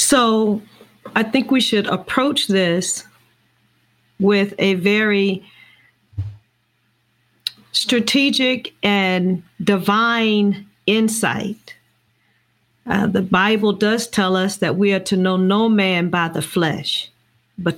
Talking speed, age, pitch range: 105 wpm, 40-59, 175-230 Hz